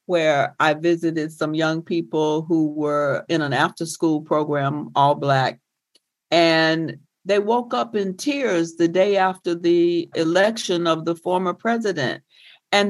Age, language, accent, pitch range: 60-79, English, American, 155-200 Hz